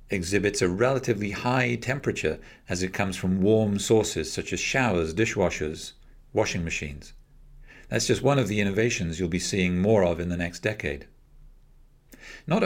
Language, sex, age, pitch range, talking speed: English, male, 50-69, 90-125 Hz, 155 wpm